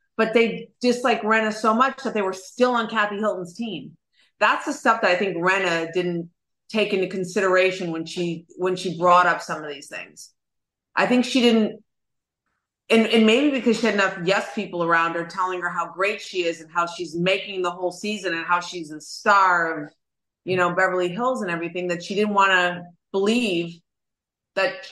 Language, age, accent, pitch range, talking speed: English, 30-49, American, 175-225 Hz, 195 wpm